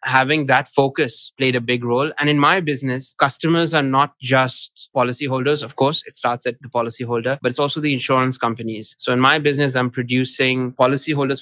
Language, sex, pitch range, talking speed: English, male, 120-135 Hz, 190 wpm